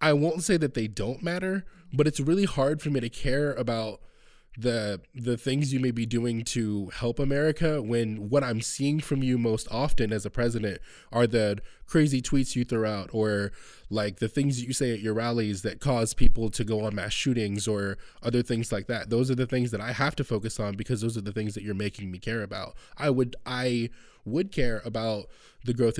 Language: English